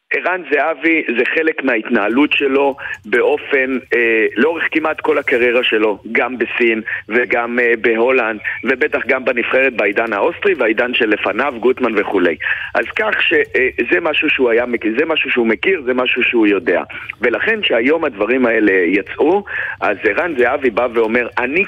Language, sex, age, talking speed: Hebrew, male, 50-69, 145 wpm